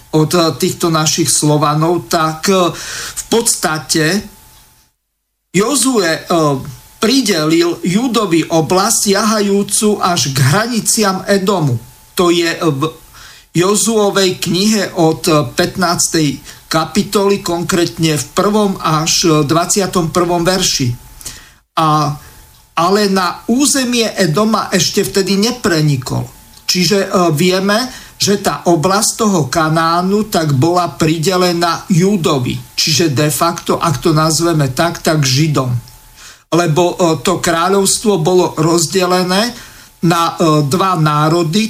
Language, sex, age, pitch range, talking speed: Slovak, male, 50-69, 155-195 Hz, 100 wpm